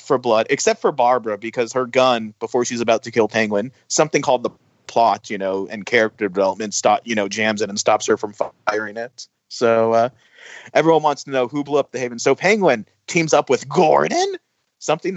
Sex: male